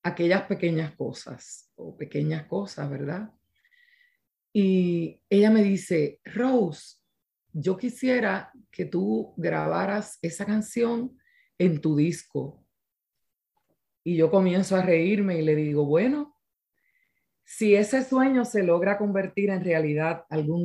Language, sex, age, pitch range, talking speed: Spanish, female, 30-49, 155-210 Hz, 115 wpm